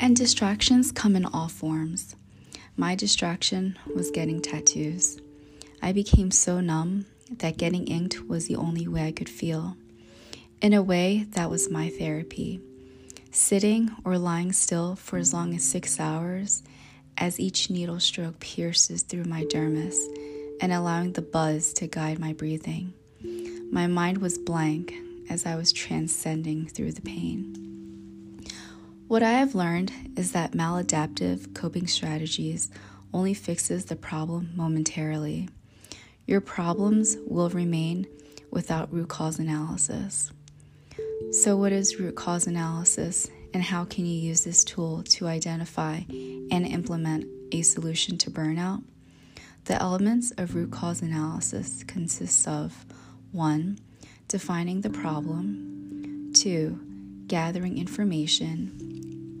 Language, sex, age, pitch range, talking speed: English, female, 20-39, 135-180 Hz, 130 wpm